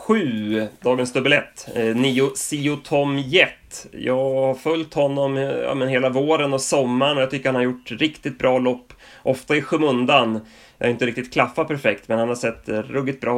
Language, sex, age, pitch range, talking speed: Swedish, male, 30-49, 115-140 Hz, 185 wpm